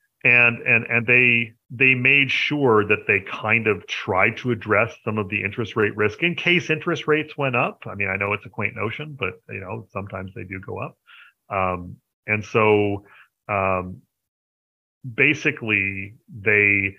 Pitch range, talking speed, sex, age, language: 100-130 Hz, 170 wpm, male, 40-59, English